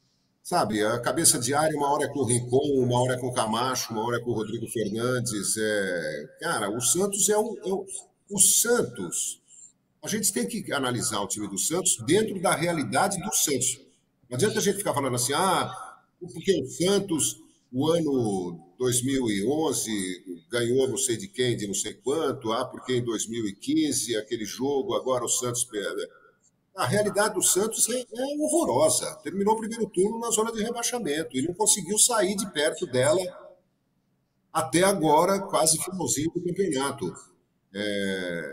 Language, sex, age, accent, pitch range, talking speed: Portuguese, male, 50-69, Brazilian, 125-200 Hz, 165 wpm